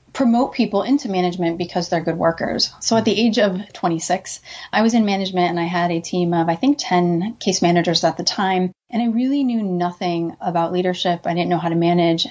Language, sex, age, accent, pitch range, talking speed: English, female, 30-49, American, 175-215 Hz, 220 wpm